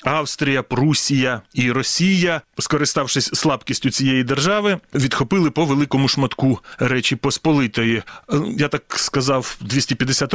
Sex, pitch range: male, 130-155 Hz